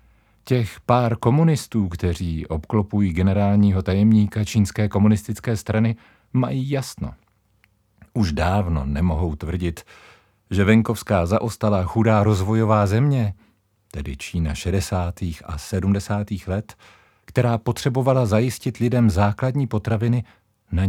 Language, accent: Czech, native